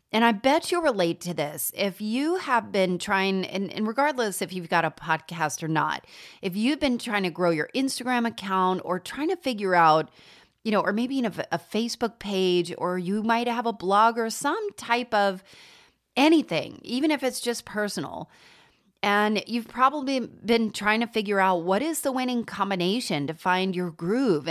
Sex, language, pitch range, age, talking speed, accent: female, English, 180-235 Hz, 30-49, 190 wpm, American